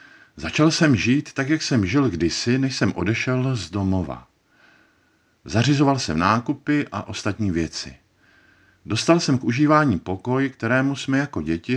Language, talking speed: Czech, 145 wpm